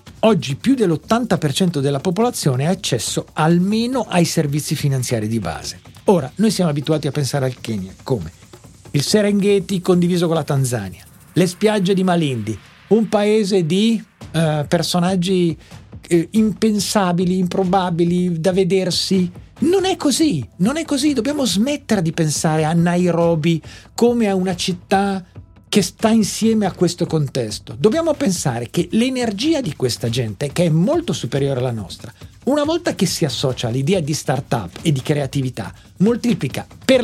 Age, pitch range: 50-69, 135-200 Hz